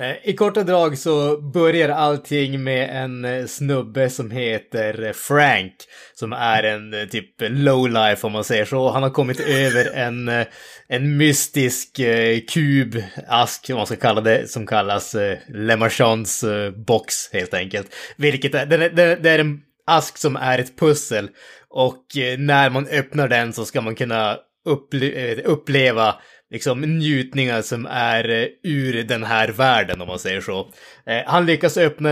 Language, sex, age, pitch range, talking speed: Swedish, male, 20-39, 115-145 Hz, 135 wpm